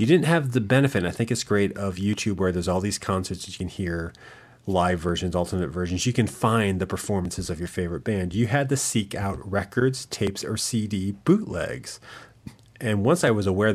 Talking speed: 215 wpm